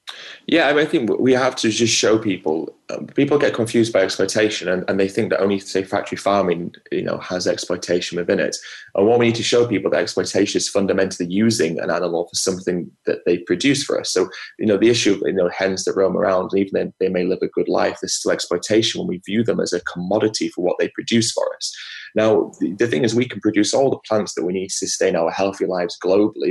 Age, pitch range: 20-39, 95-120 Hz